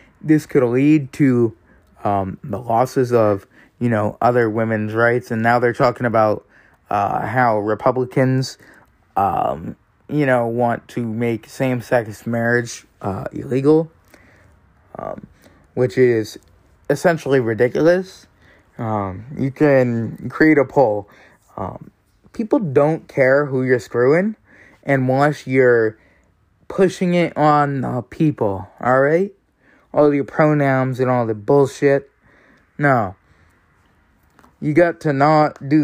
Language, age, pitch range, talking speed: English, 20-39, 105-145 Hz, 120 wpm